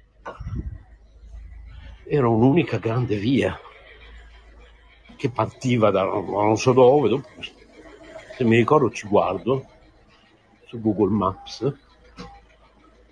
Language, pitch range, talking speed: Italian, 90-125 Hz, 80 wpm